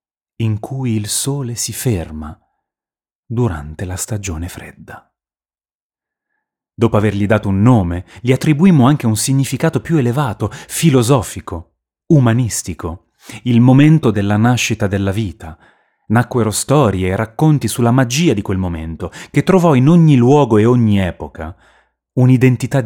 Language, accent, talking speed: Italian, native, 125 wpm